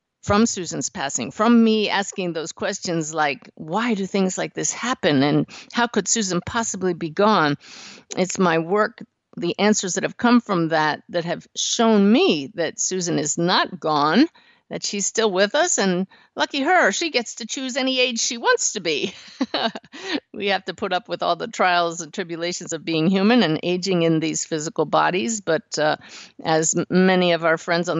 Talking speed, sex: 190 wpm, female